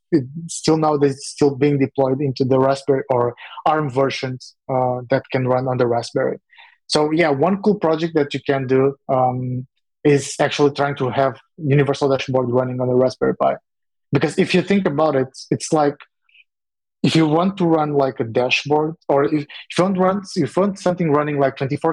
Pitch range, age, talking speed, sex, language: 130-155 Hz, 20-39, 190 wpm, male, English